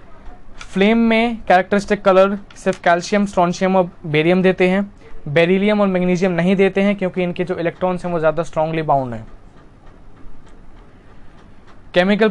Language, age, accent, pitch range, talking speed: Hindi, 20-39, native, 160-195 Hz, 135 wpm